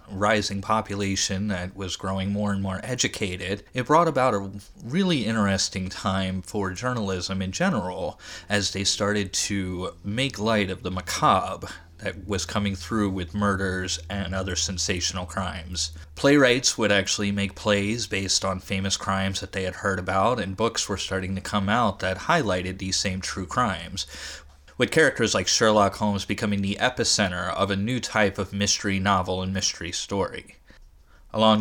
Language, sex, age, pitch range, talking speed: English, male, 30-49, 95-110 Hz, 160 wpm